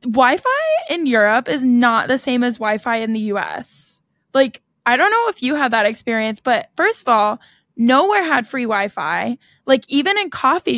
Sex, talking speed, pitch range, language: female, 185 wpm, 215-265 Hz, English